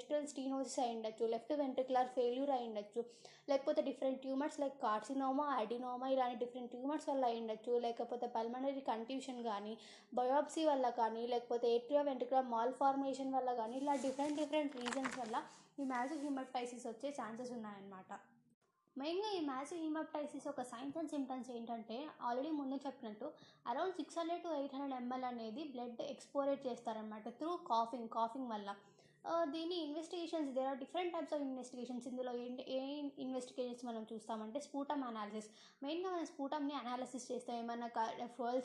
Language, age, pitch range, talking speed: Telugu, 20-39, 235-280 Hz, 140 wpm